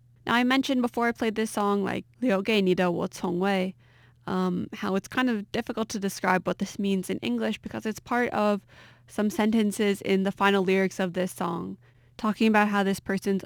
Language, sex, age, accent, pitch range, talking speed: English, female, 20-39, American, 185-220 Hz, 180 wpm